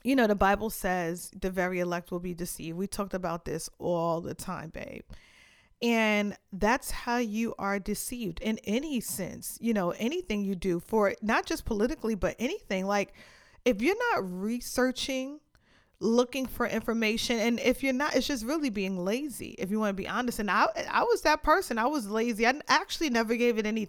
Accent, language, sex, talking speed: American, English, female, 195 wpm